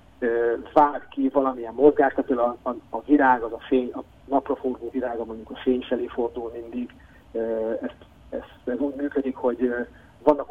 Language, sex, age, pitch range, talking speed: Hungarian, male, 30-49, 125-150 Hz, 160 wpm